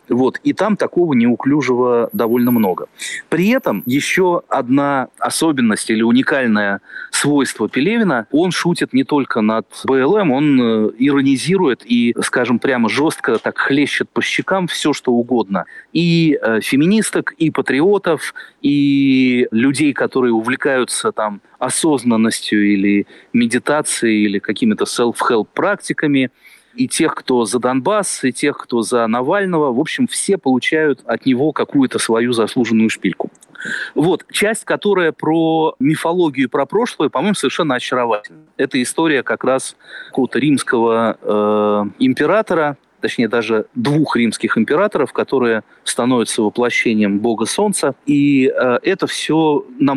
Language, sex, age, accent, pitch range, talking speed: Russian, male, 30-49, native, 115-165 Hz, 125 wpm